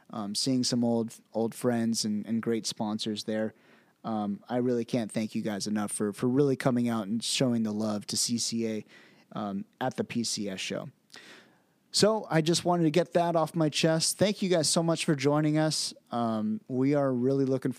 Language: English